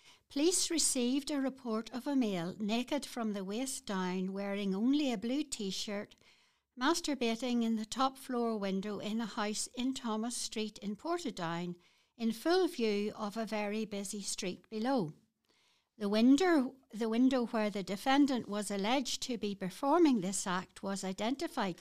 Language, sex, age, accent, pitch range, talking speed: English, female, 60-79, British, 200-260 Hz, 150 wpm